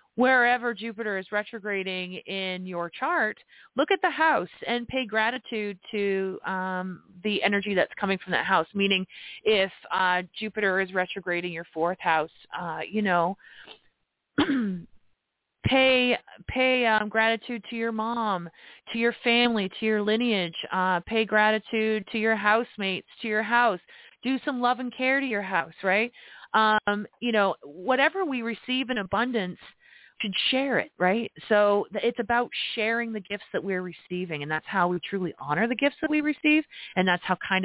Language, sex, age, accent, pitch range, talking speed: English, female, 30-49, American, 180-235 Hz, 165 wpm